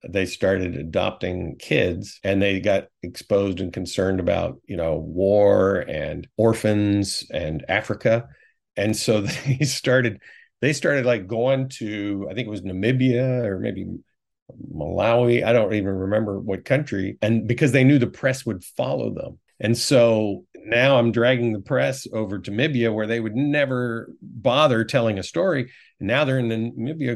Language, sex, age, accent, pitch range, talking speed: English, male, 50-69, American, 100-130 Hz, 160 wpm